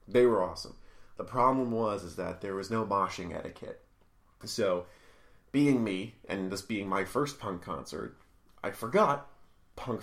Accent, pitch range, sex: American, 90-115 Hz, male